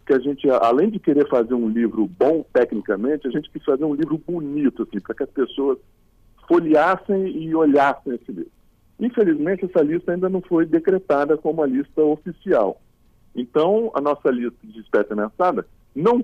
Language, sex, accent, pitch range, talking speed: Portuguese, male, Brazilian, 130-195 Hz, 175 wpm